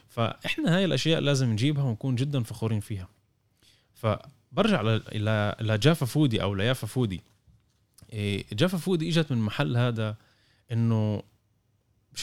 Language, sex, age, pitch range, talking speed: Arabic, male, 20-39, 110-140 Hz, 120 wpm